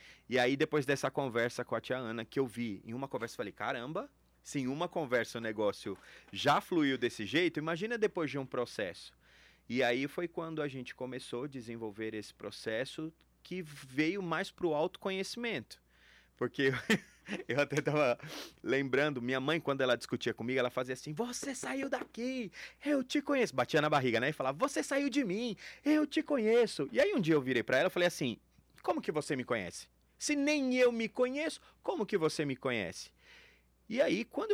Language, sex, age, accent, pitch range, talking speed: Portuguese, male, 30-49, Brazilian, 120-170 Hz, 195 wpm